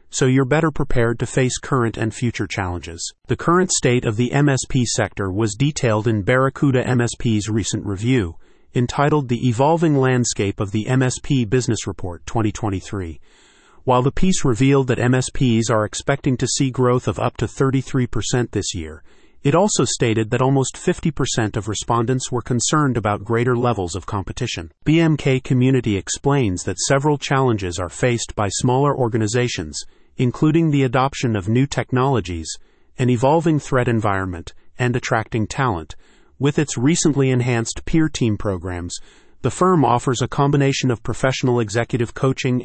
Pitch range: 110-135 Hz